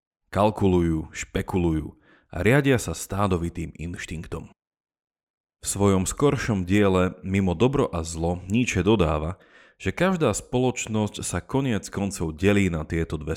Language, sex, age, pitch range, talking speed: Slovak, male, 40-59, 85-105 Hz, 120 wpm